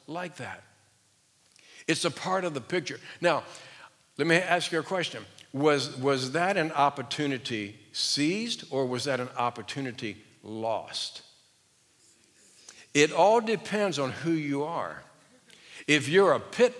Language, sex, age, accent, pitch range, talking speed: English, male, 60-79, American, 120-170 Hz, 135 wpm